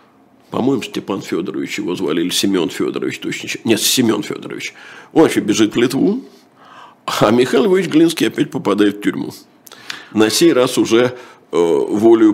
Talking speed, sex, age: 150 wpm, male, 50-69